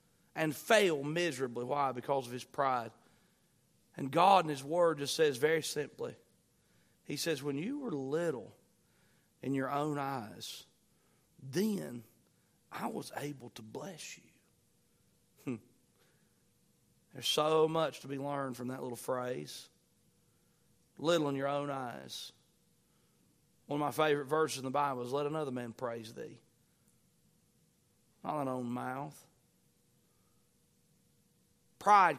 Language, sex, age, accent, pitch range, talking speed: English, male, 40-59, American, 135-160 Hz, 130 wpm